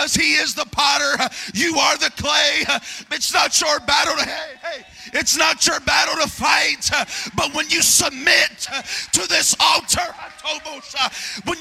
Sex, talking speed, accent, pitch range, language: male, 150 wpm, American, 230-280 Hz, English